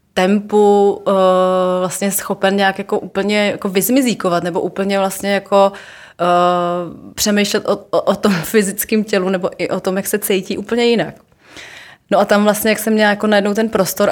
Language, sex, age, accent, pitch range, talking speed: Czech, female, 20-39, native, 180-205 Hz, 175 wpm